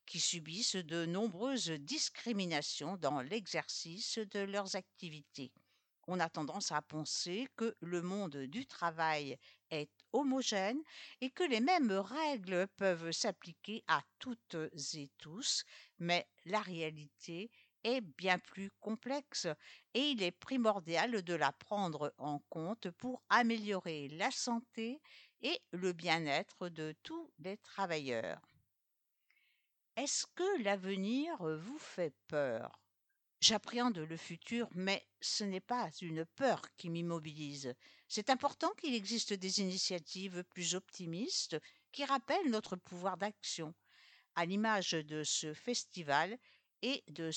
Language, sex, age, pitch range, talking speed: English, female, 60-79, 165-240 Hz, 125 wpm